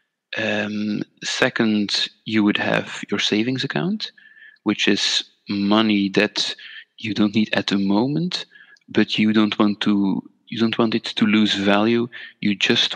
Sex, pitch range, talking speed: male, 100-115 Hz, 150 wpm